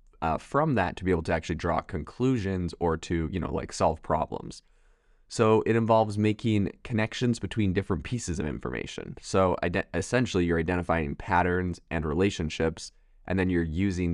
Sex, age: male, 20-39